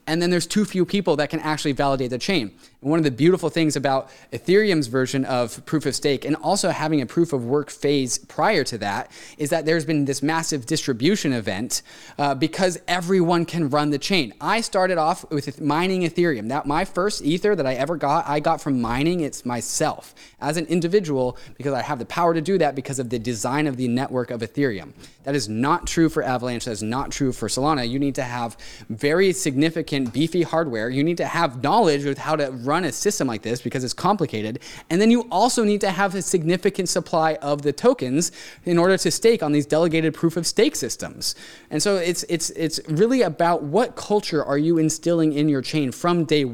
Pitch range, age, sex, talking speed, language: 130-170 Hz, 20-39, male, 215 wpm, English